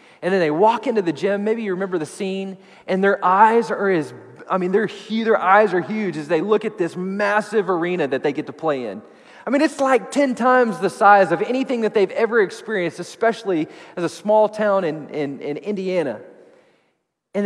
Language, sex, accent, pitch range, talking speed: English, male, American, 165-215 Hz, 205 wpm